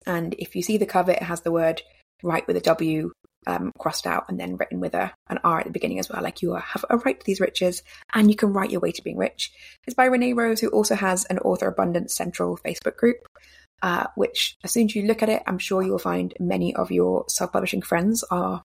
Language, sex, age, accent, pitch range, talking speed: English, female, 20-39, British, 170-215 Hz, 255 wpm